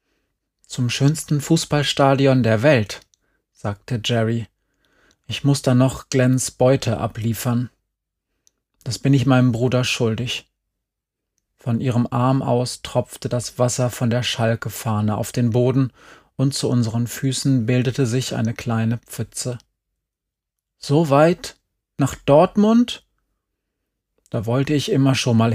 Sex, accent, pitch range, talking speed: male, German, 115-145 Hz, 120 wpm